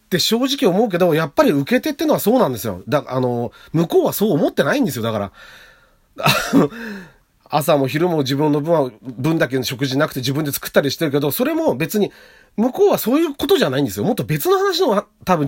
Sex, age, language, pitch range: male, 40-59, Japanese, 130-210 Hz